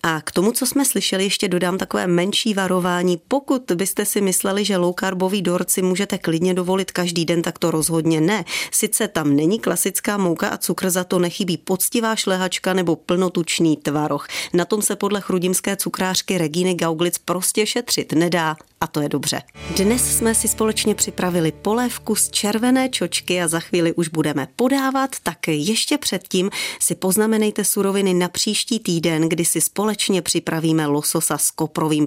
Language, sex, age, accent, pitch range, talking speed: Czech, female, 30-49, native, 160-200 Hz, 165 wpm